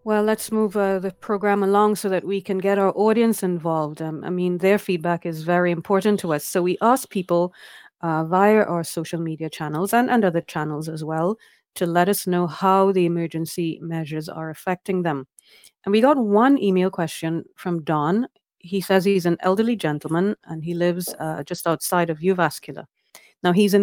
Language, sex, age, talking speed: Finnish, female, 30-49, 195 wpm